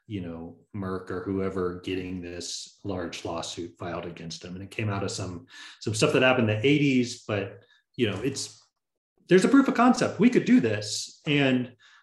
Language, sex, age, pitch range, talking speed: English, male, 30-49, 100-125 Hz, 195 wpm